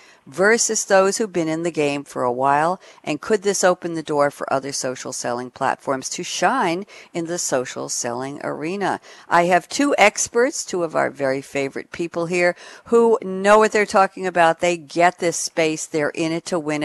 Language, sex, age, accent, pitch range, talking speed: English, female, 60-79, American, 135-180 Hz, 190 wpm